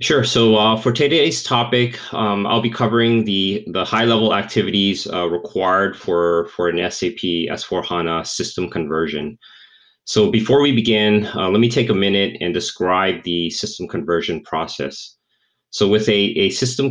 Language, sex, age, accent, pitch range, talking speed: English, male, 30-49, American, 85-110 Hz, 160 wpm